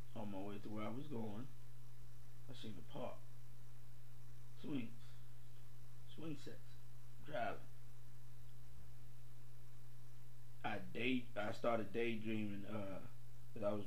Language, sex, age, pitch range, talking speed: English, male, 30-49, 115-120 Hz, 105 wpm